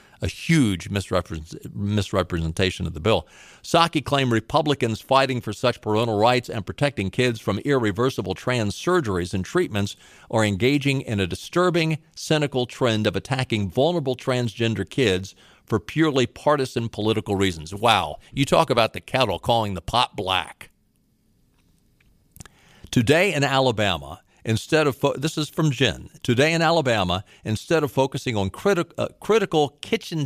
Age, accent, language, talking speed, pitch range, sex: 50-69, American, English, 135 wpm, 105-145 Hz, male